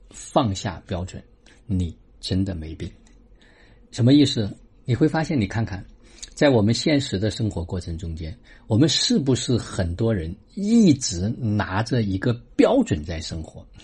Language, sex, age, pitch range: Chinese, male, 50-69, 90-120 Hz